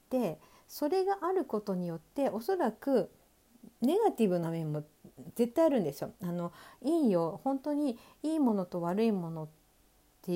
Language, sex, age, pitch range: Japanese, female, 50-69, 180-280 Hz